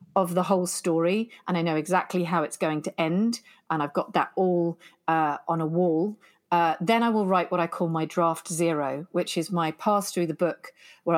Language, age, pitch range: English, 40-59, 160-200 Hz